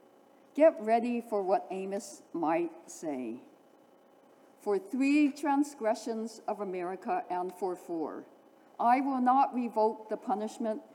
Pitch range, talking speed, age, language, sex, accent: 240-320 Hz, 115 wpm, 60-79, English, female, American